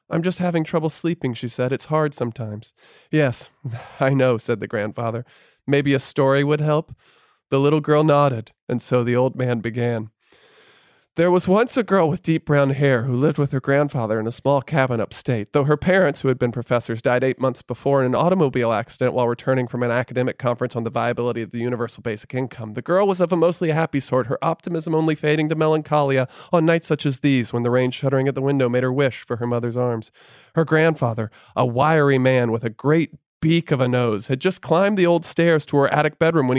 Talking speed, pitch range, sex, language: 220 wpm, 125-175 Hz, male, English